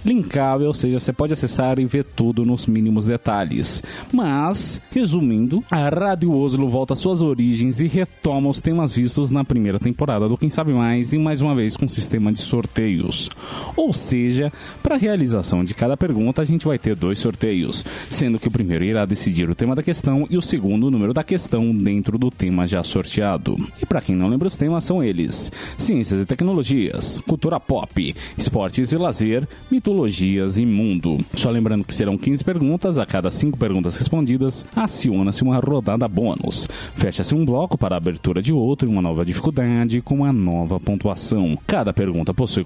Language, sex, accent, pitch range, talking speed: Portuguese, male, Brazilian, 110-150 Hz, 185 wpm